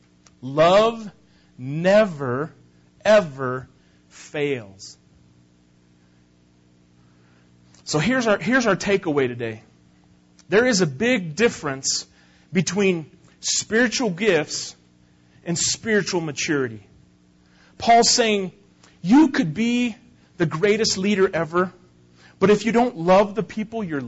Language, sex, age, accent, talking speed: English, male, 40-59, American, 95 wpm